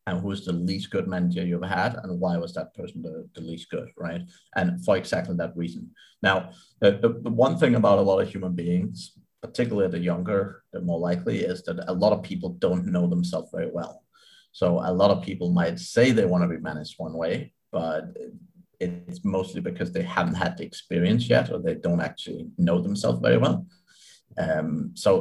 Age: 30-49